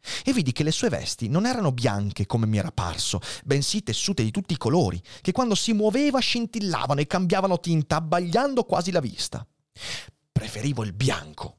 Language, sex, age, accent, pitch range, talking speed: Italian, male, 30-49, native, 110-155 Hz, 175 wpm